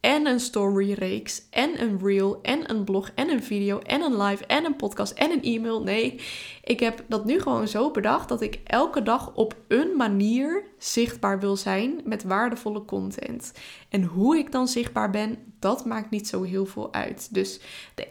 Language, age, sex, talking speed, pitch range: Dutch, 20-39, female, 190 wpm, 200-245 Hz